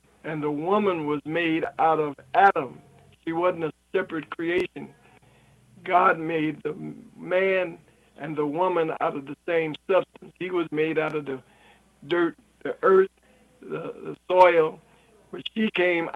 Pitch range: 155-185 Hz